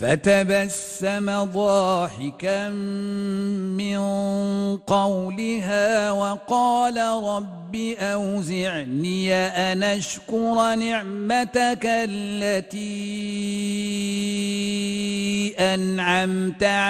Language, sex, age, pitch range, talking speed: Arabic, male, 50-69, 200-225 Hz, 45 wpm